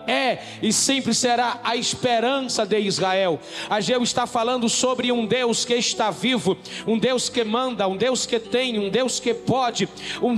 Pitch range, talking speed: 245-280 Hz, 180 wpm